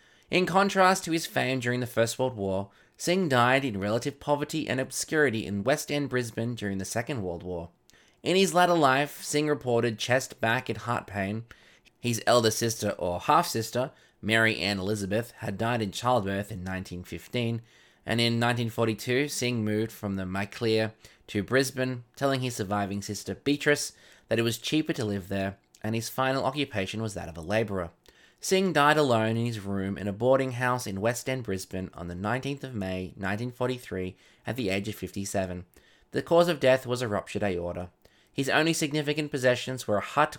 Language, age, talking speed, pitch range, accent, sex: English, 20-39, 180 wpm, 100-130 Hz, Australian, male